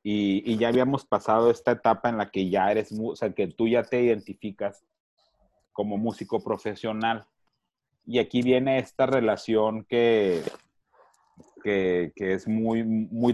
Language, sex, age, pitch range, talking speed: Spanish, male, 40-59, 105-130 Hz, 145 wpm